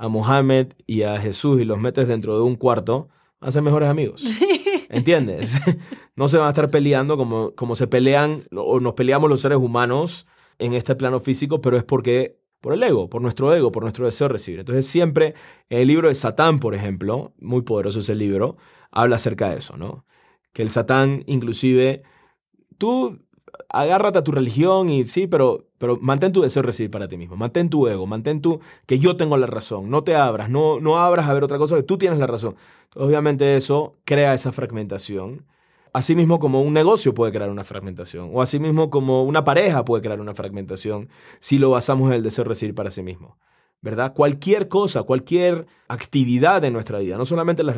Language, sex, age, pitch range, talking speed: Spanish, male, 20-39, 115-150 Hz, 200 wpm